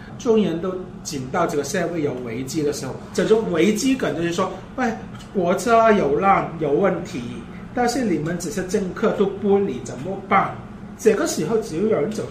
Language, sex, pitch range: Chinese, male, 145-200 Hz